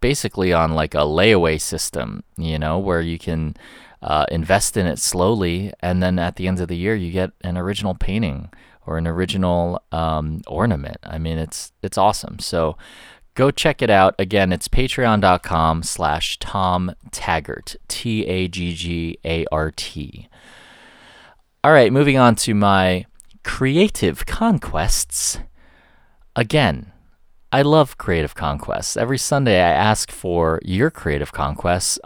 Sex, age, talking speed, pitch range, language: male, 30-49, 135 wpm, 85-115 Hz, English